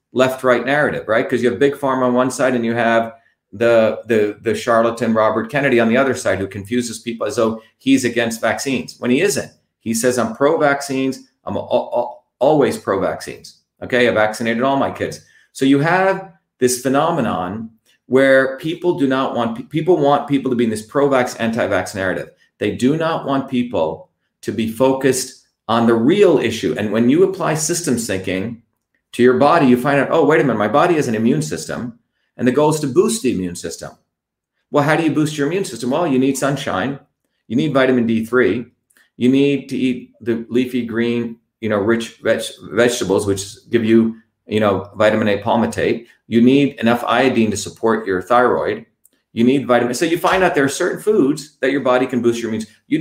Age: 40-59